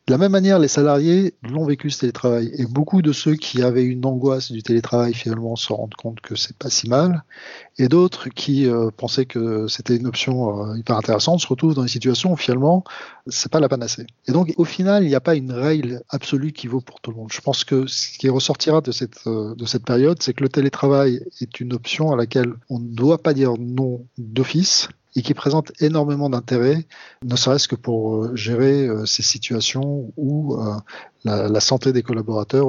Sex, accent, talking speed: male, French, 220 wpm